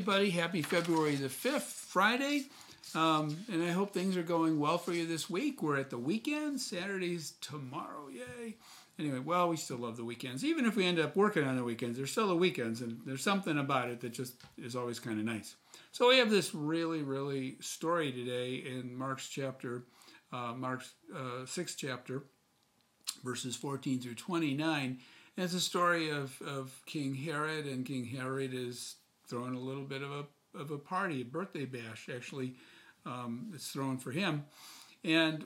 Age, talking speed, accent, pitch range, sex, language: 50-69, 180 wpm, American, 130-165 Hz, male, English